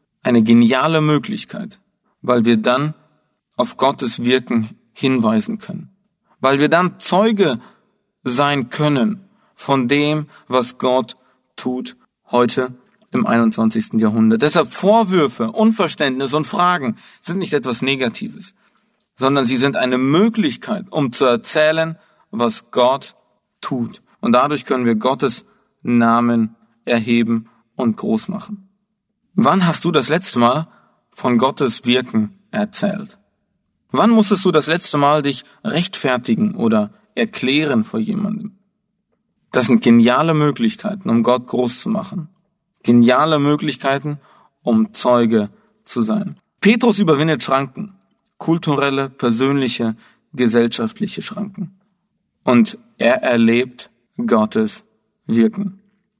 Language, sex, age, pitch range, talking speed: German, male, 40-59, 130-210 Hz, 110 wpm